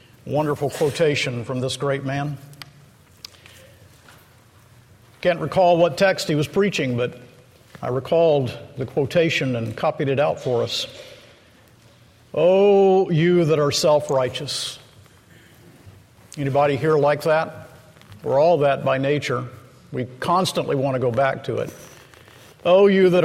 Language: English